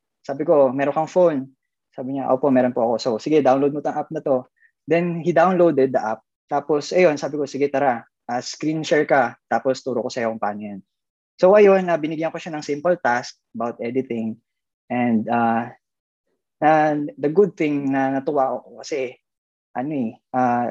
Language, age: Filipino, 20-39